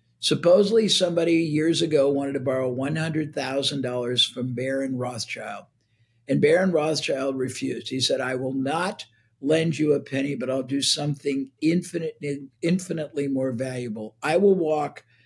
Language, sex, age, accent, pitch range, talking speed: English, male, 60-79, American, 135-180 Hz, 135 wpm